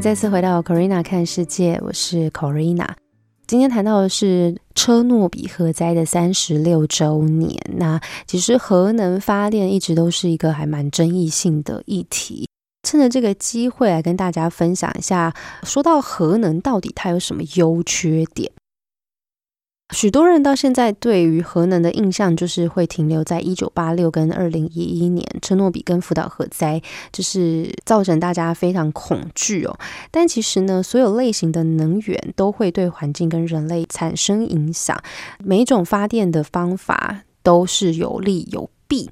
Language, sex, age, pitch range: Chinese, female, 20-39, 165-205 Hz